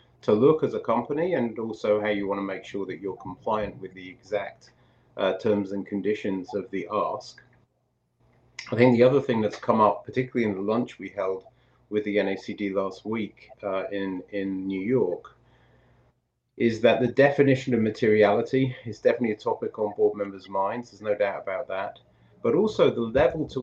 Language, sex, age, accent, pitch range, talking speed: English, male, 30-49, British, 100-120 Hz, 190 wpm